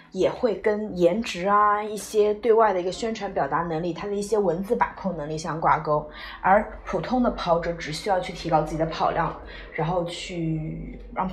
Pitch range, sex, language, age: 160-210 Hz, female, Chinese, 20-39